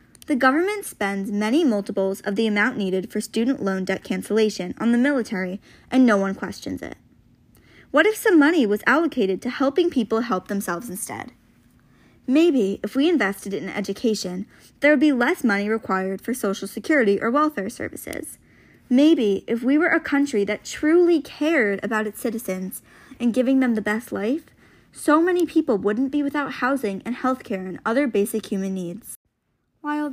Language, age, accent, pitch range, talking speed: English, 20-39, American, 200-275 Hz, 170 wpm